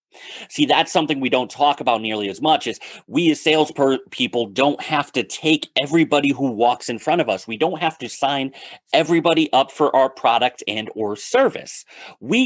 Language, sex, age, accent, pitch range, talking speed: English, male, 40-59, American, 120-160 Hz, 190 wpm